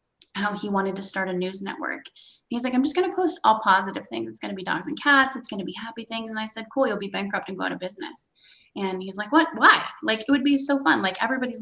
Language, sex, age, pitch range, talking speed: English, female, 20-39, 190-235 Hz, 290 wpm